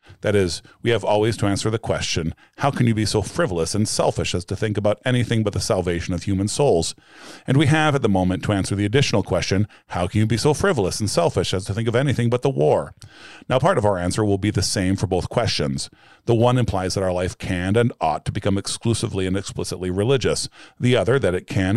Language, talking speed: English, 240 wpm